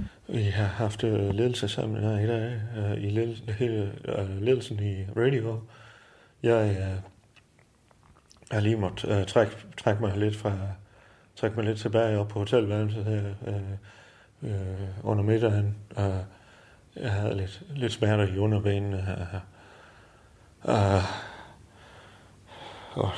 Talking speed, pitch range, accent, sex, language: 135 wpm, 100-115 Hz, native, male, Danish